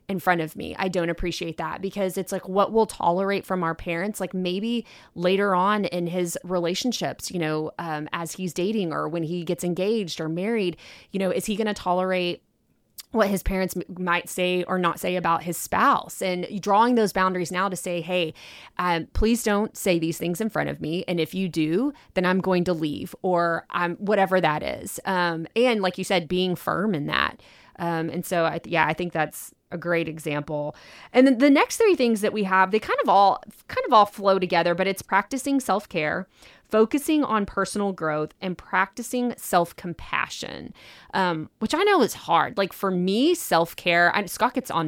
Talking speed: 200 wpm